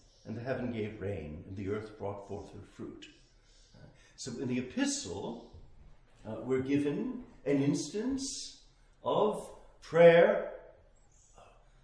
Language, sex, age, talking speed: English, male, 60-79, 120 wpm